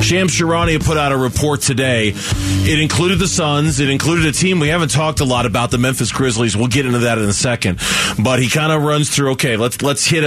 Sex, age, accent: male, 40-59, American